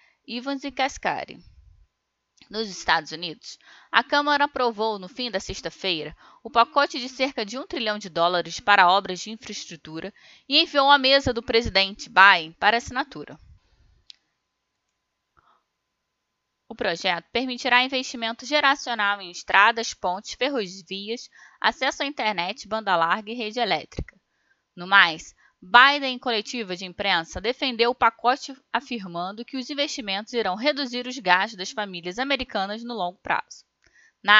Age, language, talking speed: 10-29, Portuguese, 135 wpm